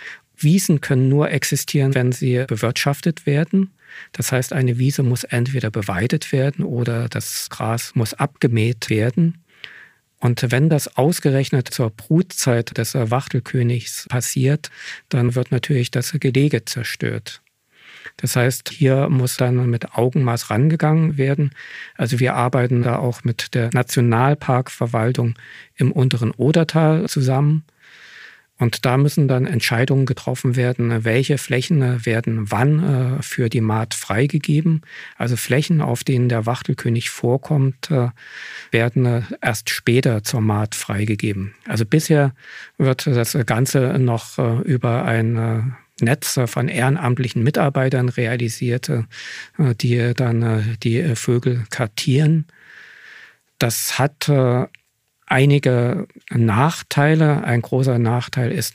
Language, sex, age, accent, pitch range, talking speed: German, male, 50-69, German, 120-145 Hz, 115 wpm